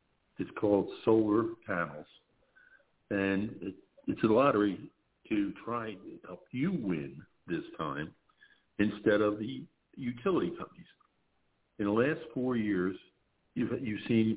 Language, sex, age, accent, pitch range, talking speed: English, male, 60-79, American, 95-125 Hz, 125 wpm